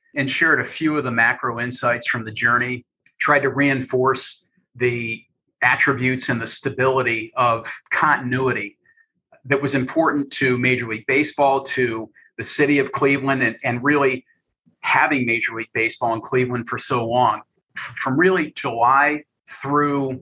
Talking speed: 145 wpm